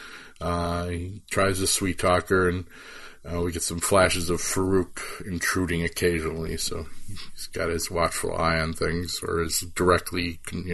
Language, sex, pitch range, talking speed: English, male, 85-100 Hz, 155 wpm